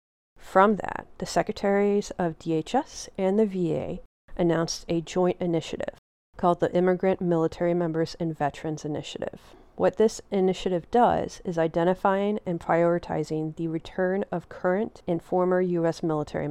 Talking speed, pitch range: 135 wpm, 165-185 Hz